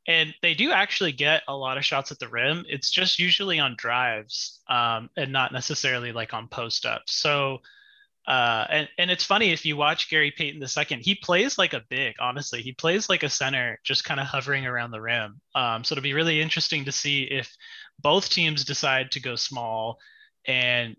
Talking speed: 200 wpm